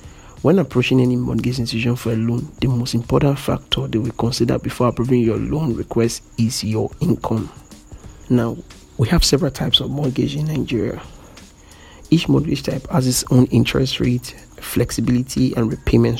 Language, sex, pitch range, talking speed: English, male, 110-135 Hz, 160 wpm